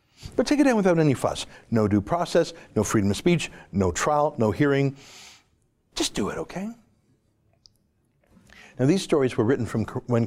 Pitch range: 115-190 Hz